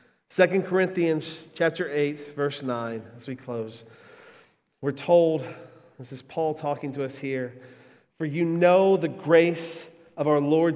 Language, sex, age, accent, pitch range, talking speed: English, male, 40-59, American, 150-185 Hz, 145 wpm